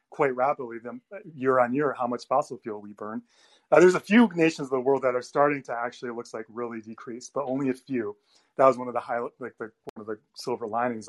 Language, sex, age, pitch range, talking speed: English, male, 30-49, 125-170 Hz, 255 wpm